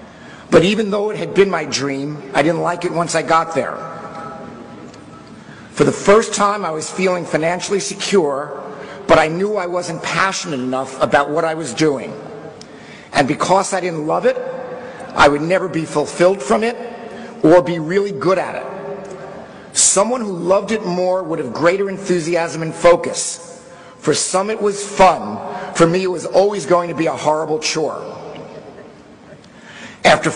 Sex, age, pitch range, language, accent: male, 50-69, 160-190 Hz, Chinese, American